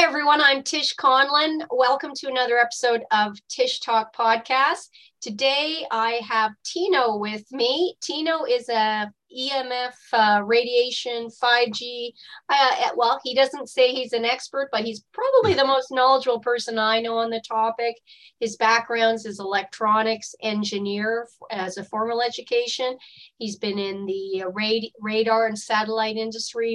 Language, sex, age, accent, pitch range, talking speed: English, female, 40-59, American, 205-255 Hz, 150 wpm